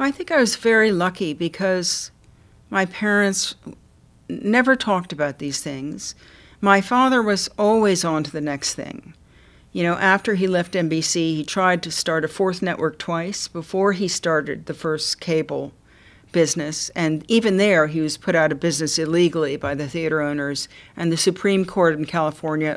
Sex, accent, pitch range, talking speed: female, American, 160-205 Hz, 170 wpm